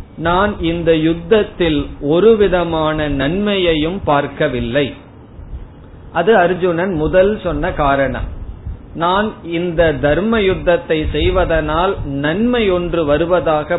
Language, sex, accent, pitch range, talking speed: Tamil, male, native, 135-175 Hz, 85 wpm